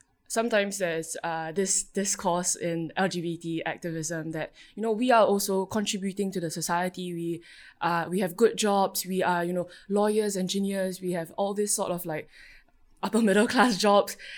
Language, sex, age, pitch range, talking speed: English, female, 20-39, 170-205 Hz, 165 wpm